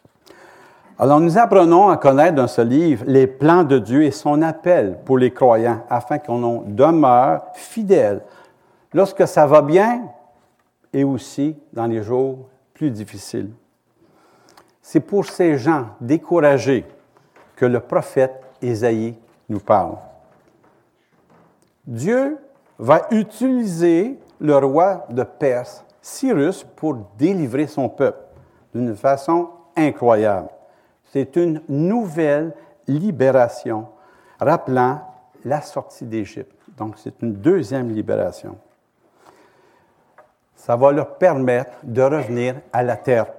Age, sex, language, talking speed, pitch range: 60-79, male, French, 110 wpm, 125-170 Hz